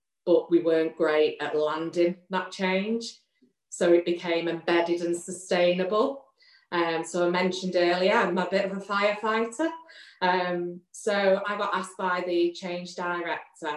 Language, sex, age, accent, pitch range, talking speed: English, female, 30-49, British, 165-190 Hz, 150 wpm